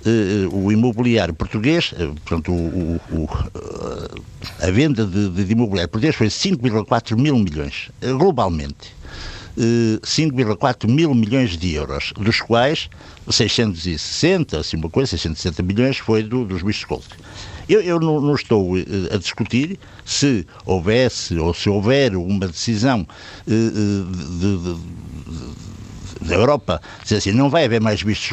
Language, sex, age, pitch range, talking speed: Portuguese, male, 60-79, 100-150 Hz, 135 wpm